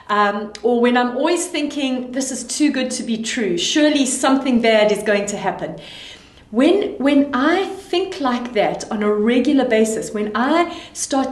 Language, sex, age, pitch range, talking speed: English, female, 30-49, 220-290 Hz, 175 wpm